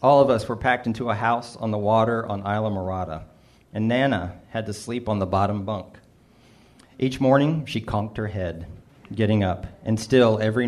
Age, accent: 40-59, American